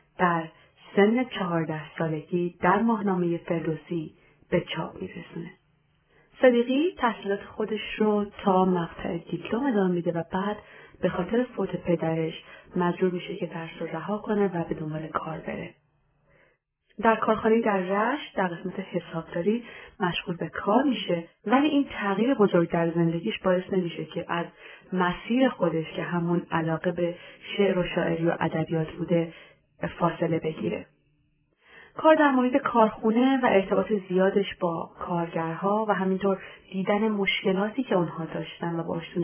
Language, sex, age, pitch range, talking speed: Persian, female, 30-49, 170-210 Hz, 140 wpm